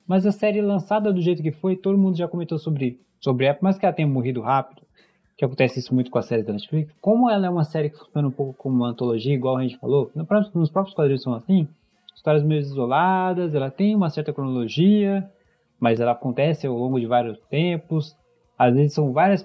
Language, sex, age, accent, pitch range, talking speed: Portuguese, male, 20-39, Brazilian, 125-180 Hz, 220 wpm